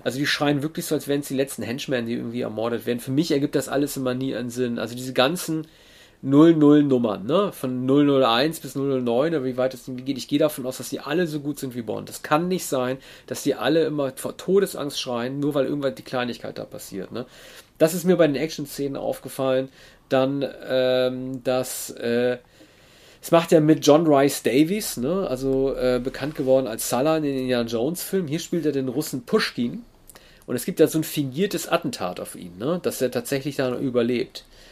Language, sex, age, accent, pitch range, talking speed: German, male, 40-59, German, 130-155 Hz, 210 wpm